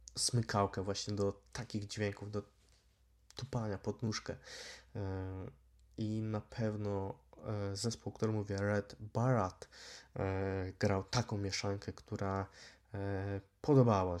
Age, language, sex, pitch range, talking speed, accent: 20-39, Polish, male, 100-120 Hz, 95 wpm, native